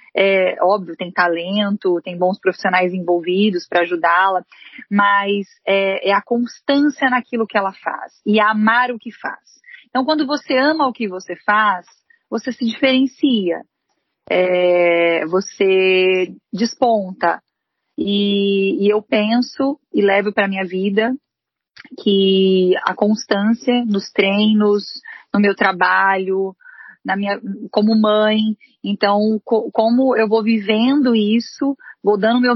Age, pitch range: 30-49, 195-245 Hz